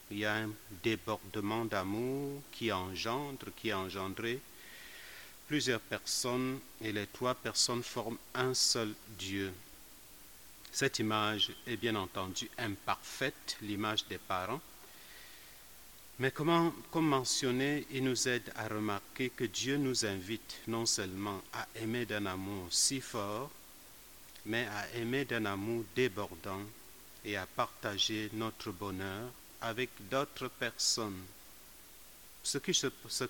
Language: French